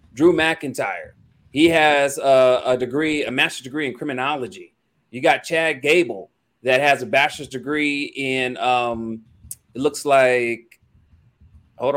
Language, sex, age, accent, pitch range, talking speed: English, male, 30-49, American, 135-180 Hz, 135 wpm